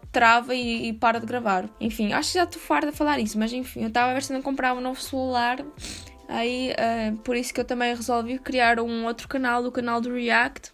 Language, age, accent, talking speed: Portuguese, 10-29, Brazilian, 240 wpm